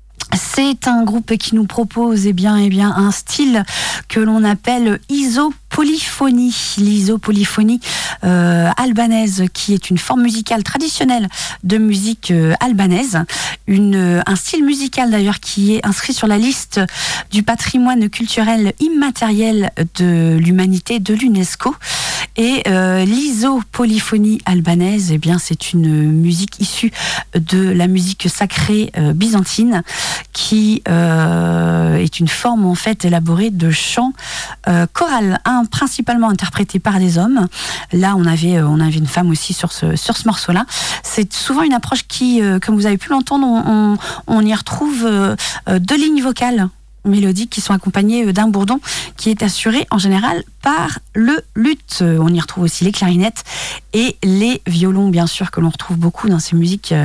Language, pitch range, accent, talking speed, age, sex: French, 180-245 Hz, French, 155 wpm, 40-59, female